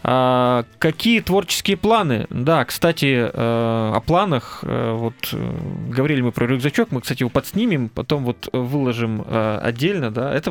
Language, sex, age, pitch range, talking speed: Russian, male, 20-39, 120-165 Hz, 125 wpm